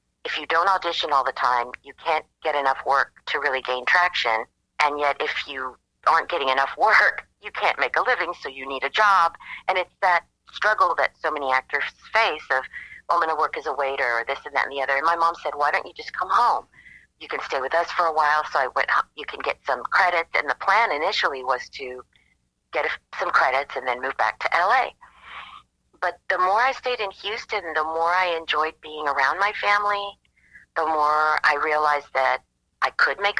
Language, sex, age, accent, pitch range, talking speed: English, female, 40-59, American, 135-180 Hz, 225 wpm